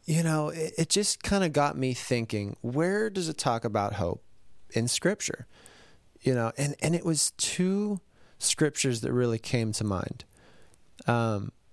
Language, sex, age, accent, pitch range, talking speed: English, male, 30-49, American, 105-135 Hz, 165 wpm